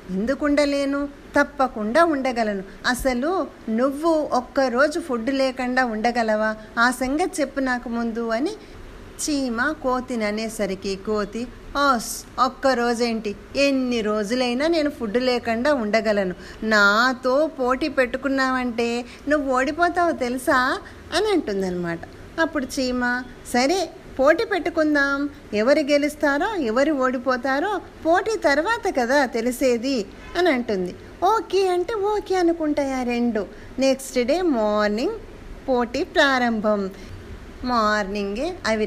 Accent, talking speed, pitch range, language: native, 95 wpm, 215-295 Hz, Telugu